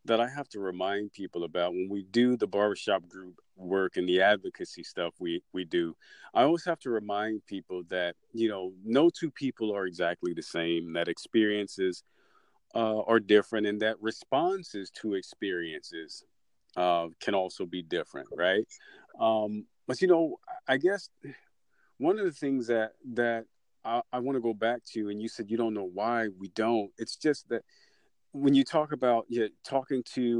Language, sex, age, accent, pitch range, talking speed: English, male, 40-59, American, 100-145 Hz, 180 wpm